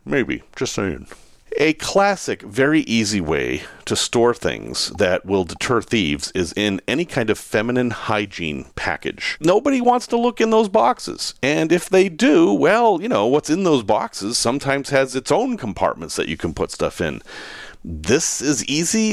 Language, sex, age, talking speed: English, male, 40-59, 175 wpm